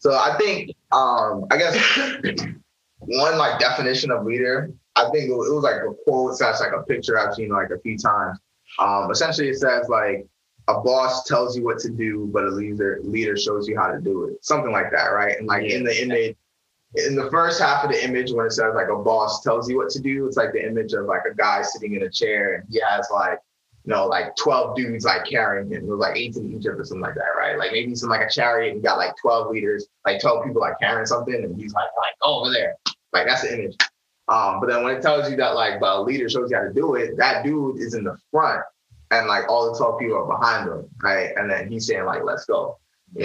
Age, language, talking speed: 20-39, English, 250 wpm